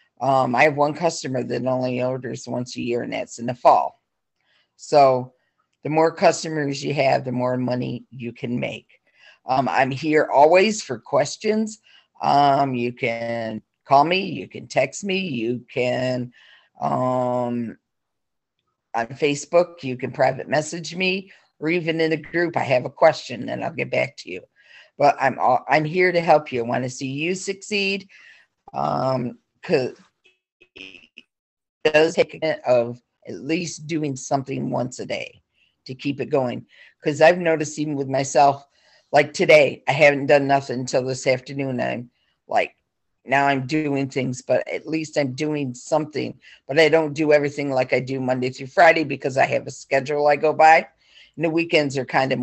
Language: English